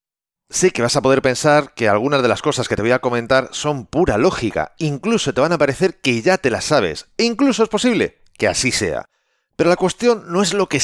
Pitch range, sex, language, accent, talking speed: 125-185 Hz, male, Spanish, Spanish, 240 wpm